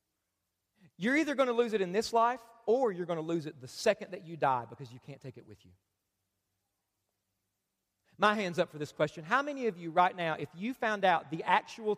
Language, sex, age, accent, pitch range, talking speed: English, male, 40-59, American, 145-225 Hz, 225 wpm